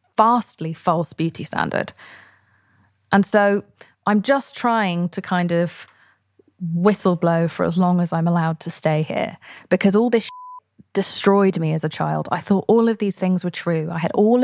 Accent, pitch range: British, 170-200 Hz